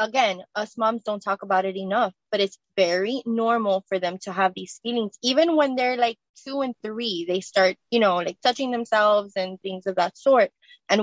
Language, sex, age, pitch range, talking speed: English, female, 20-39, 190-230 Hz, 205 wpm